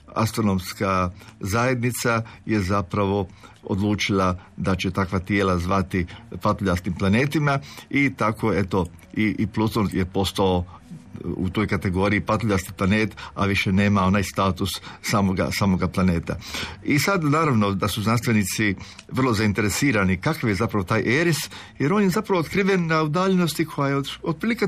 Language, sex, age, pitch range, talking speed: Croatian, male, 50-69, 100-165 Hz, 135 wpm